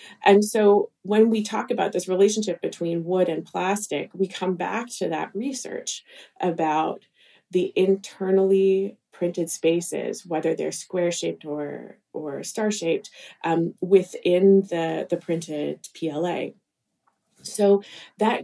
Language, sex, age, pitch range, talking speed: English, female, 30-49, 165-200 Hz, 125 wpm